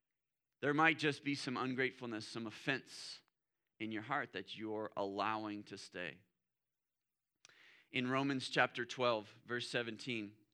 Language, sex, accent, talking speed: English, male, American, 125 wpm